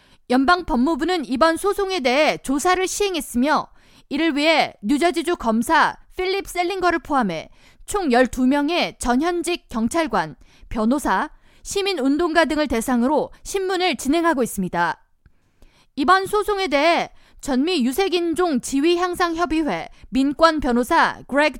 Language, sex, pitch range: Korean, female, 255-345 Hz